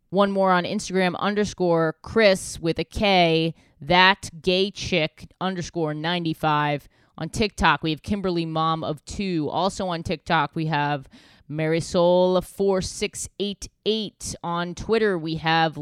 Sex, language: female, English